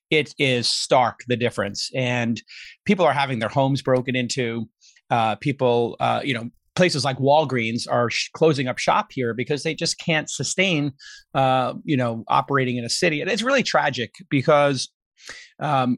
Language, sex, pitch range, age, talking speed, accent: English, male, 125-150 Hz, 30-49, 170 wpm, American